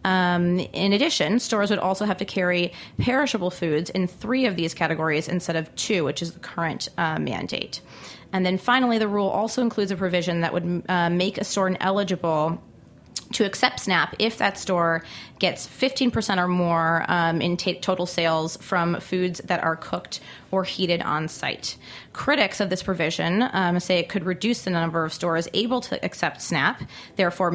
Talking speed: 185 wpm